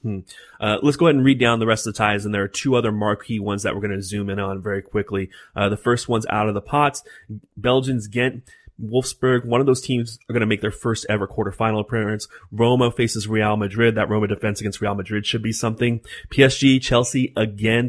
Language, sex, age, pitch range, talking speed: English, male, 30-49, 105-125 Hz, 230 wpm